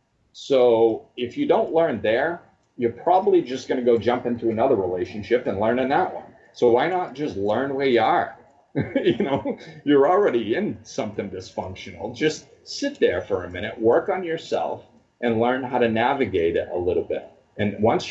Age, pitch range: 40-59, 110-170 Hz